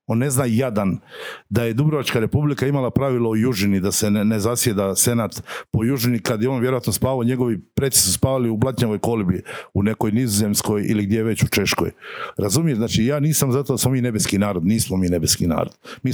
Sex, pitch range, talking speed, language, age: male, 105-140 Hz, 205 wpm, Croatian, 60-79